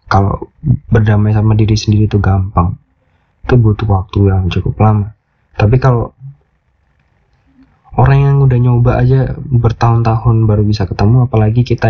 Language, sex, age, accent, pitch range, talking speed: Indonesian, male, 20-39, native, 90-120 Hz, 130 wpm